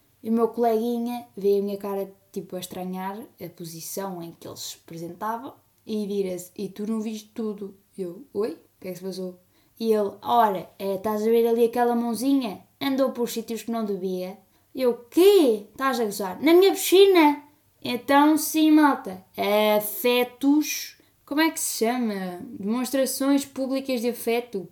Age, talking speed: 10-29, 170 wpm